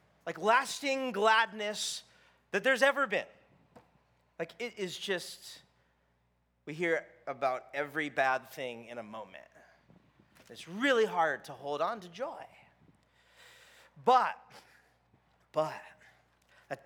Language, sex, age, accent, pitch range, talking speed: English, male, 30-49, American, 160-235 Hz, 110 wpm